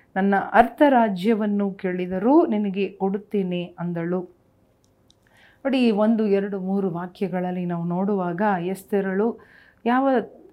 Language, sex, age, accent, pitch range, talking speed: Kannada, female, 40-59, native, 190-235 Hz, 85 wpm